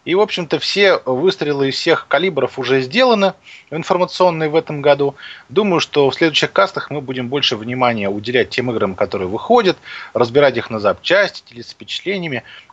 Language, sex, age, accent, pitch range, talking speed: Russian, male, 20-39, native, 110-150 Hz, 165 wpm